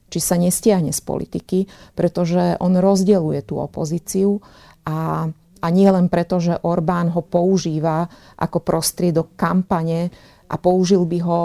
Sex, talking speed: female, 135 wpm